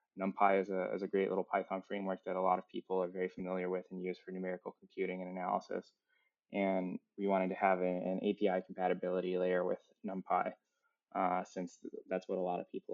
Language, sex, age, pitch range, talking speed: English, male, 20-39, 90-100 Hz, 210 wpm